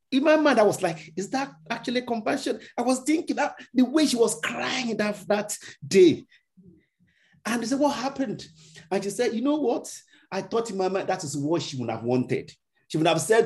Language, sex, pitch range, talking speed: English, male, 130-215 Hz, 220 wpm